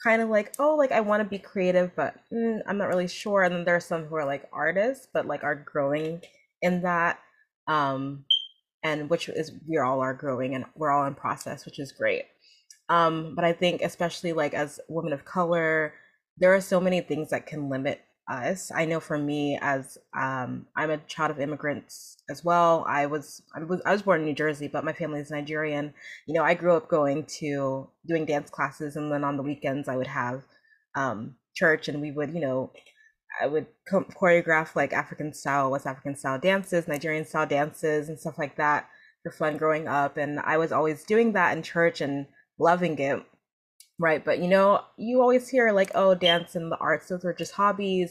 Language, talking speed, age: English, 205 wpm, 20-39